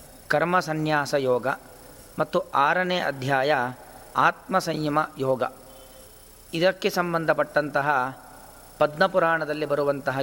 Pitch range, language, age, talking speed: 135-165 Hz, Kannada, 40-59, 75 wpm